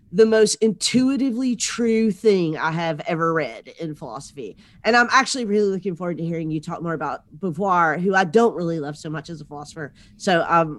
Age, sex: 30-49, female